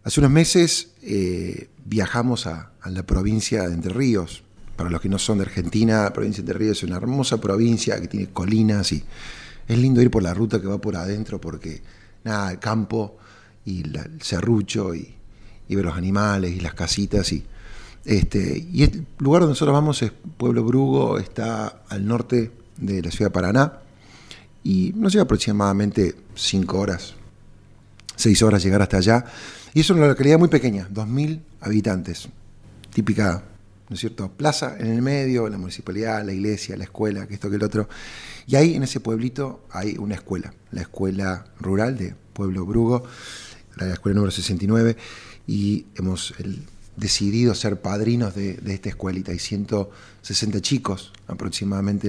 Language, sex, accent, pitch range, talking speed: Spanish, male, Argentinian, 100-120 Hz, 170 wpm